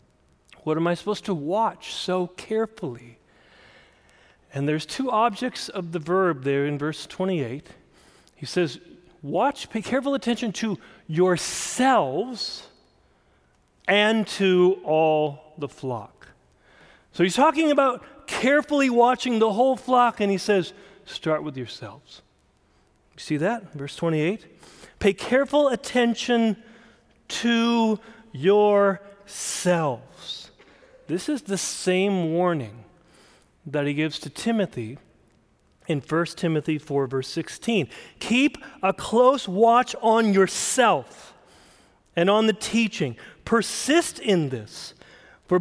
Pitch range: 155-235 Hz